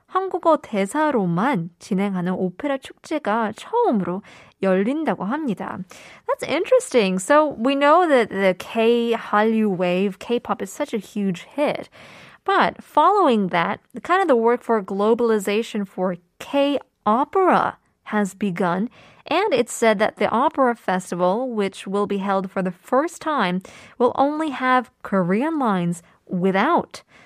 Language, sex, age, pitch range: Korean, female, 20-39, 195-260 Hz